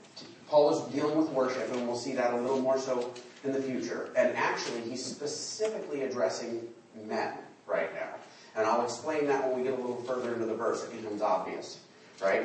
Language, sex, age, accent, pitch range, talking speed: English, male, 40-59, American, 120-150 Hz, 200 wpm